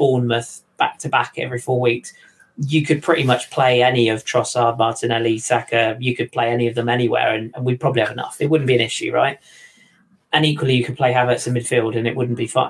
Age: 20-39